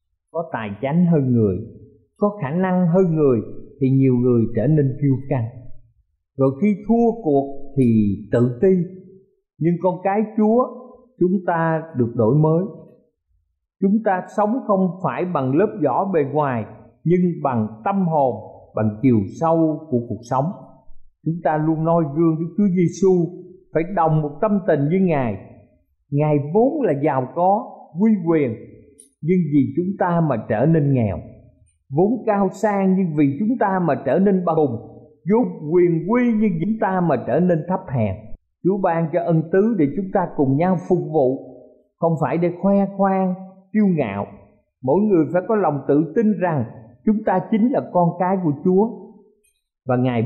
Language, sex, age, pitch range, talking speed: Vietnamese, male, 50-69, 130-185 Hz, 170 wpm